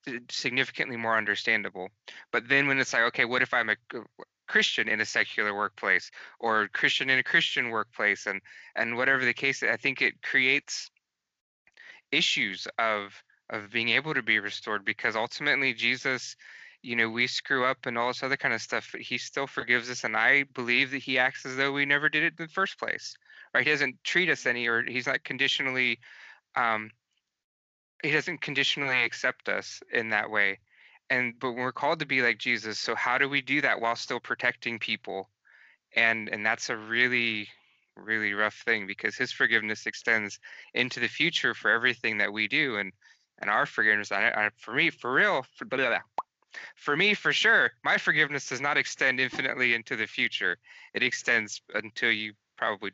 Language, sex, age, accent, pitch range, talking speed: English, male, 20-39, American, 110-135 Hz, 190 wpm